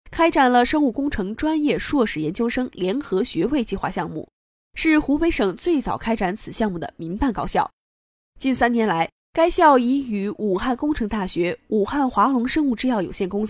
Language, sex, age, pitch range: Chinese, female, 10-29, 205-290 Hz